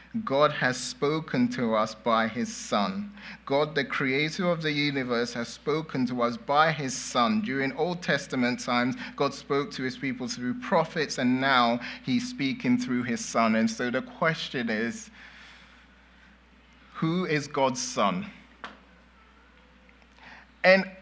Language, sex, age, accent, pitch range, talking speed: English, male, 30-49, British, 150-210 Hz, 140 wpm